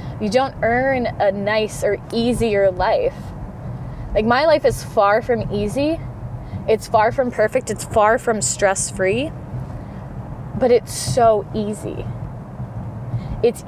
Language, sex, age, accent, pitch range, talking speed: English, female, 20-39, American, 145-240 Hz, 125 wpm